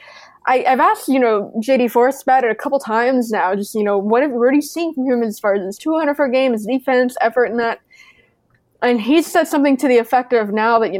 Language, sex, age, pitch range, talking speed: English, female, 20-39, 205-250 Hz, 250 wpm